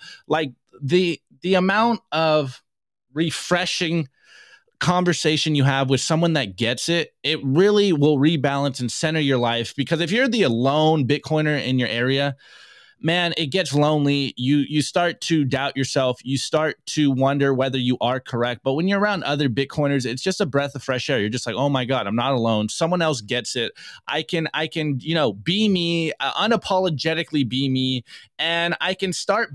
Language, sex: English, male